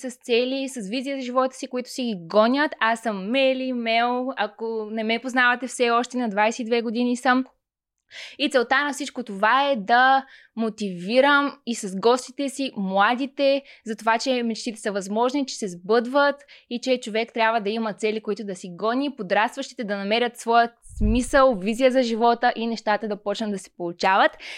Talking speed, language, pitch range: 180 wpm, Bulgarian, 210-260 Hz